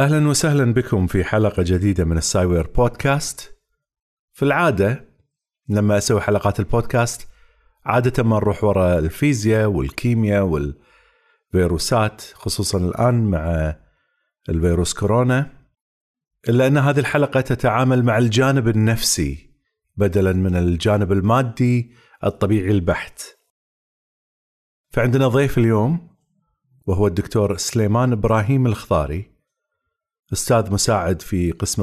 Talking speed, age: 100 wpm, 40-59